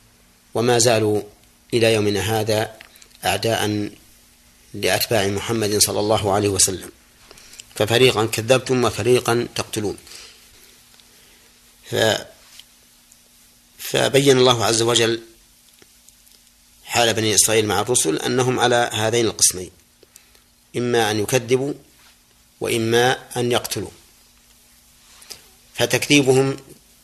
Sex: male